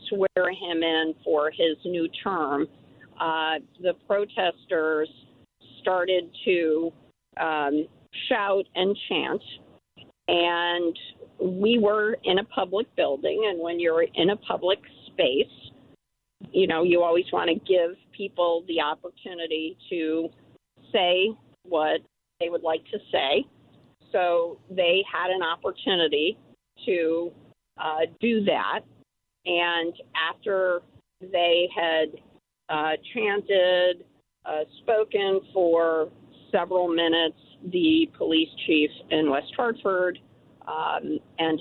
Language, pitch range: English, 155-190 Hz